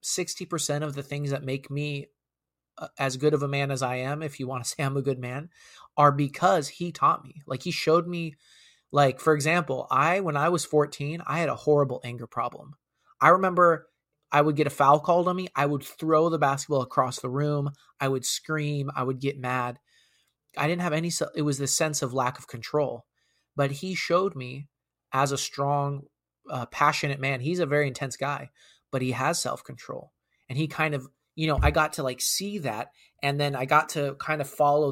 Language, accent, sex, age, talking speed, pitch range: English, American, male, 20-39, 210 wpm, 135-155 Hz